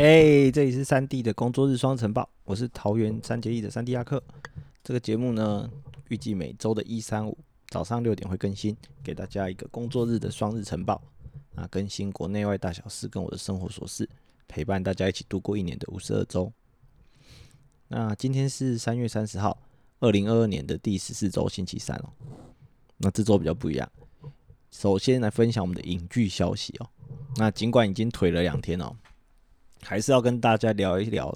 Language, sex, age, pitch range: Chinese, male, 20-39, 100-125 Hz